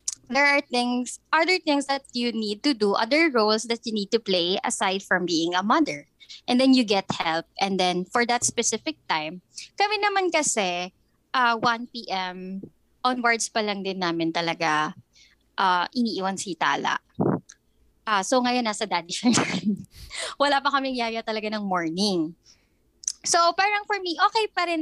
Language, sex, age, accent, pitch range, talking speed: Filipino, female, 20-39, native, 190-275 Hz, 165 wpm